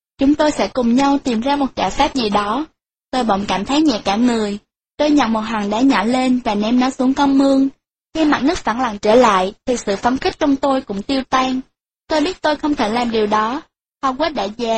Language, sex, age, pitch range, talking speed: Vietnamese, female, 10-29, 220-280 Hz, 245 wpm